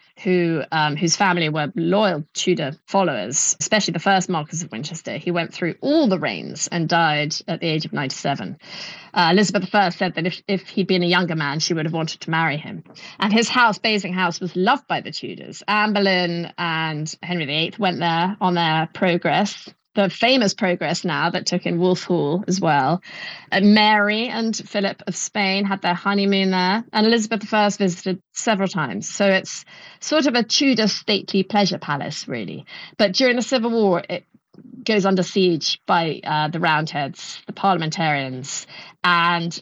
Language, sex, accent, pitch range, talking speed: English, female, British, 170-205 Hz, 180 wpm